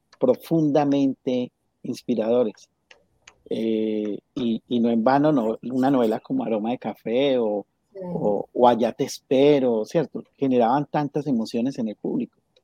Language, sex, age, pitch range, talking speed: Spanish, male, 40-59, 120-195 Hz, 135 wpm